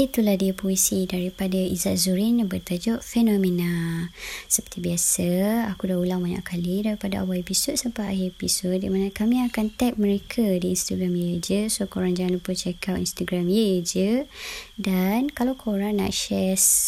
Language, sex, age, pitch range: Malay, male, 20-39, 180-220 Hz